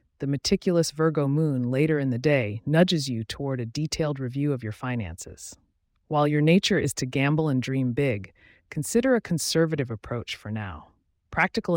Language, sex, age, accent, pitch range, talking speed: English, female, 30-49, American, 115-160 Hz, 170 wpm